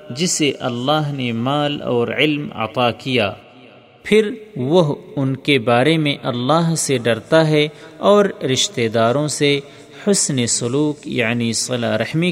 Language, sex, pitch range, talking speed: Urdu, male, 120-155 Hz, 130 wpm